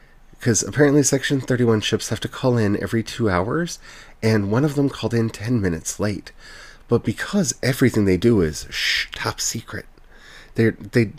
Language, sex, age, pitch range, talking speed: English, male, 30-49, 105-150 Hz, 165 wpm